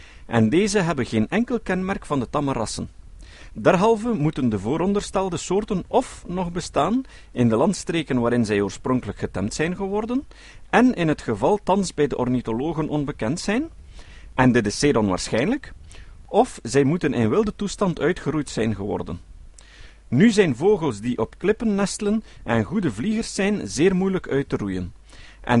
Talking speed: 155 wpm